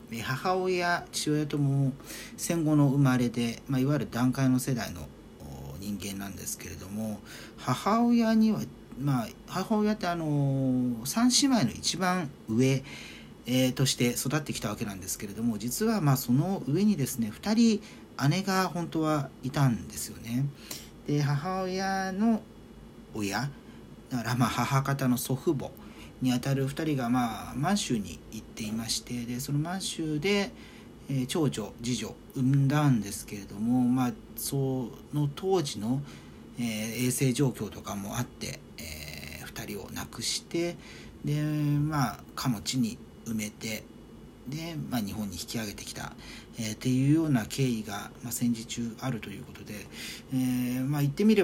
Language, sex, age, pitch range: Japanese, male, 40-59, 115-150 Hz